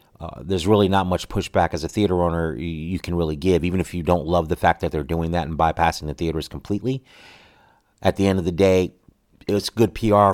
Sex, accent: male, American